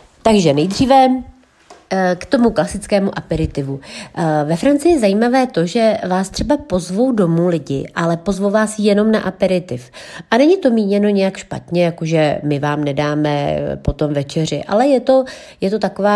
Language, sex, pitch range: Czech, female, 160-190 Hz